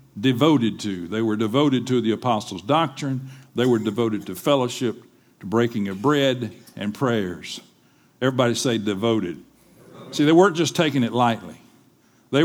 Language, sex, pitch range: English, male, 125-160 Hz